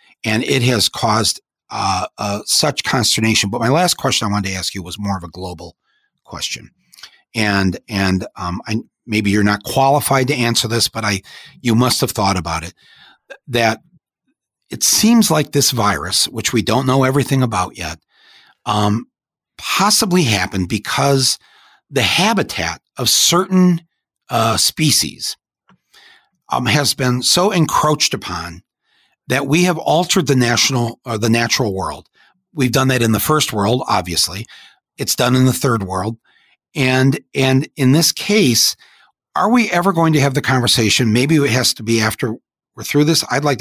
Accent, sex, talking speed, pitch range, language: American, male, 165 wpm, 105-150 Hz, English